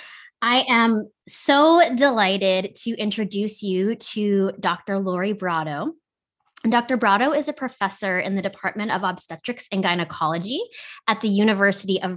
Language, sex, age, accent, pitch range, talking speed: English, female, 20-39, American, 185-230 Hz, 135 wpm